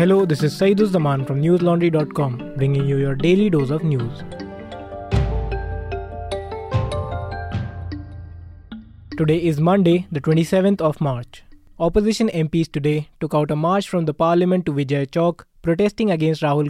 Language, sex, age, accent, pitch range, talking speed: English, male, 20-39, Indian, 145-175 Hz, 135 wpm